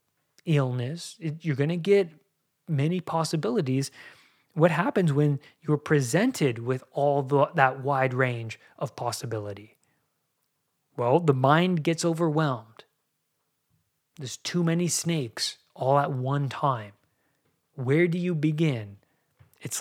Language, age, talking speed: English, 20-39, 110 wpm